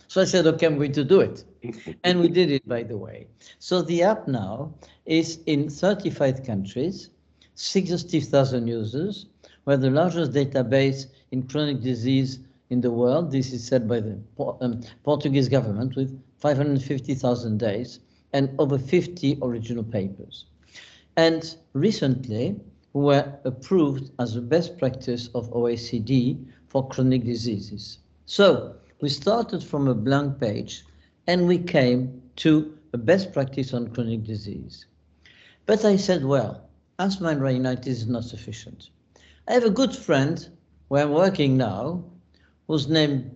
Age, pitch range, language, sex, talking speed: 60-79, 120-155 Hz, English, male, 145 wpm